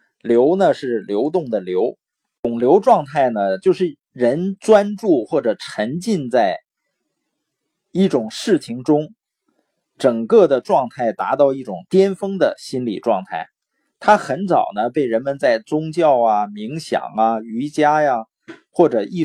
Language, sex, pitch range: Chinese, male, 125-200 Hz